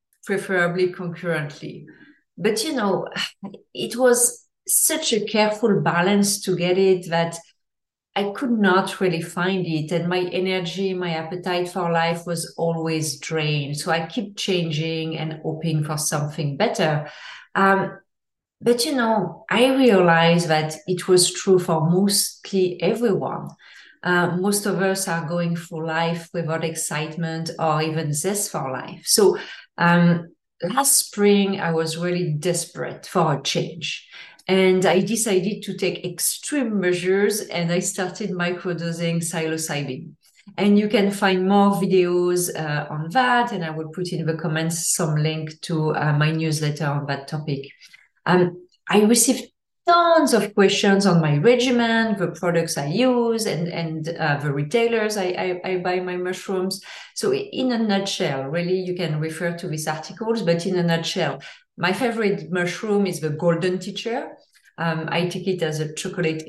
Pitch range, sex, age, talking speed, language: 165-200 Hz, female, 30-49, 155 wpm, English